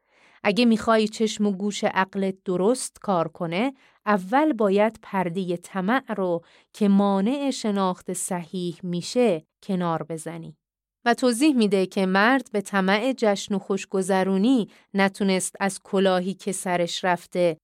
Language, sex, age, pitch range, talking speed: Persian, female, 30-49, 175-220 Hz, 125 wpm